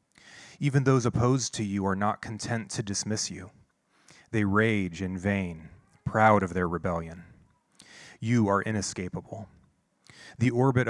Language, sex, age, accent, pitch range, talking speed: English, male, 30-49, American, 95-115 Hz, 130 wpm